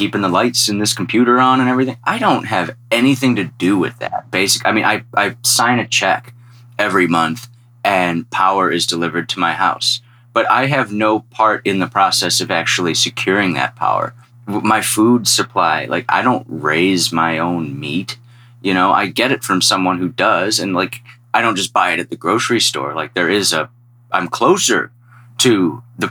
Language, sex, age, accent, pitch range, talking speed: English, male, 30-49, American, 95-120 Hz, 195 wpm